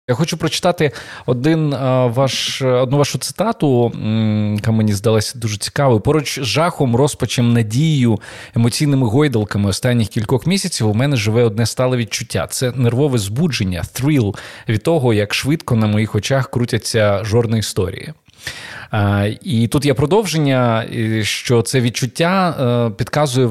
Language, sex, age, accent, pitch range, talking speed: Ukrainian, male, 20-39, native, 110-135 Hz, 130 wpm